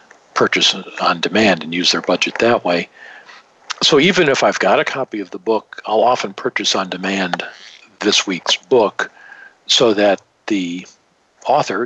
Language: English